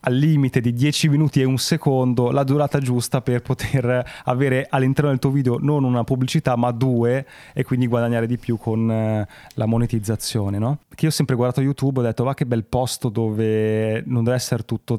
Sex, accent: male, native